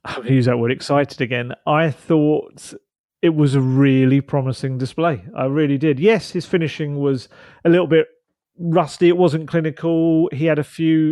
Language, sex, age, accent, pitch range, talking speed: English, male, 30-49, British, 130-160 Hz, 175 wpm